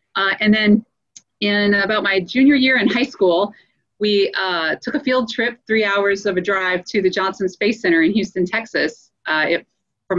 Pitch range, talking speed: 190-255 Hz, 190 wpm